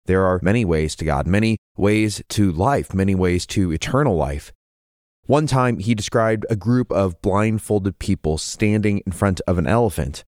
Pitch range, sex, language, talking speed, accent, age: 100-135 Hz, male, English, 175 wpm, American, 20-39